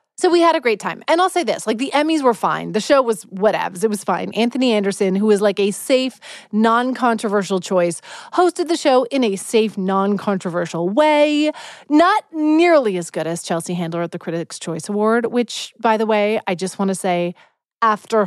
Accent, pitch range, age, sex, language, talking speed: American, 195-285 Hz, 30-49, female, English, 200 wpm